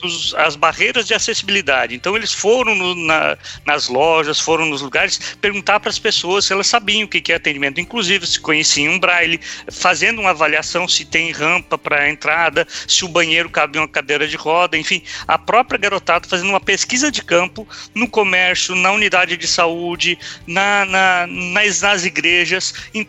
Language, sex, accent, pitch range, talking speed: Portuguese, male, Brazilian, 160-215 Hz, 175 wpm